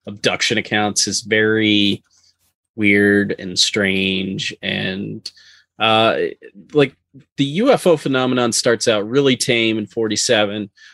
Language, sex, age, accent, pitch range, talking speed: English, male, 20-39, American, 105-125 Hz, 105 wpm